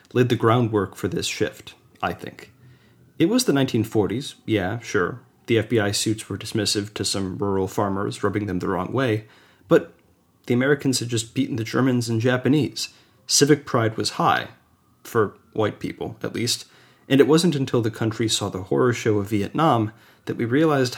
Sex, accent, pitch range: male, American, 105-130 Hz